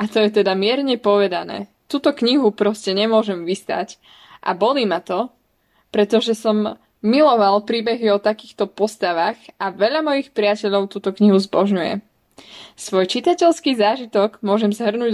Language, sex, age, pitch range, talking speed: Slovak, female, 20-39, 205-245 Hz, 135 wpm